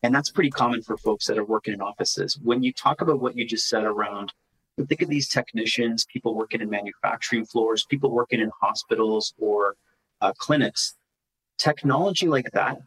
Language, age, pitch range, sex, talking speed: English, 30-49, 110-125 Hz, male, 185 wpm